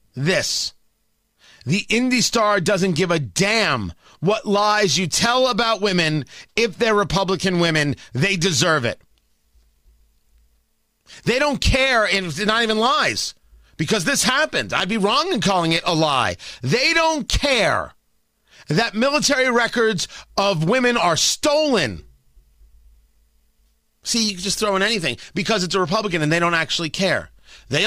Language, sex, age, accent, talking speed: English, male, 40-59, American, 140 wpm